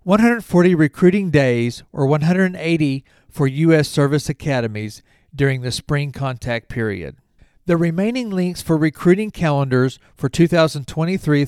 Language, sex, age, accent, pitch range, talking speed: English, male, 40-59, American, 130-165 Hz, 115 wpm